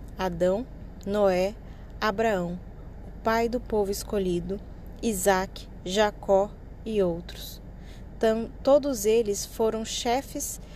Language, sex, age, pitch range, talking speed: Portuguese, female, 20-39, 195-235 Hz, 90 wpm